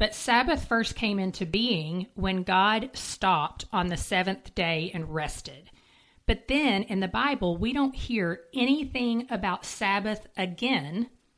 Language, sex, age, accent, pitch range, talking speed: English, female, 40-59, American, 180-230 Hz, 140 wpm